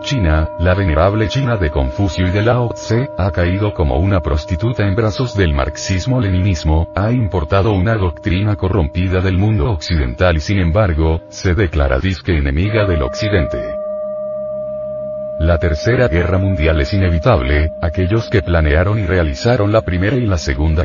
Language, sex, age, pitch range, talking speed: Spanish, male, 40-59, 80-110 Hz, 150 wpm